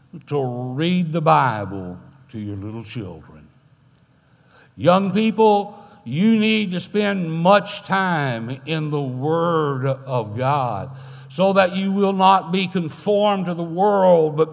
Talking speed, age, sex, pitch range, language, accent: 130 wpm, 60-79, male, 135-195 Hz, English, American